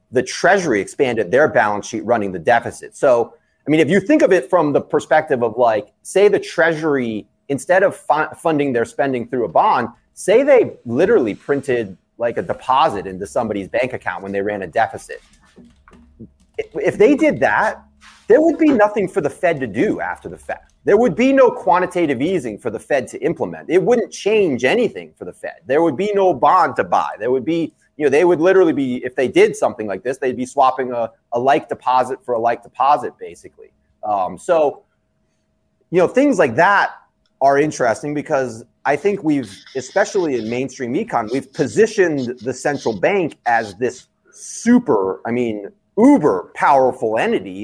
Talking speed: 185 wpm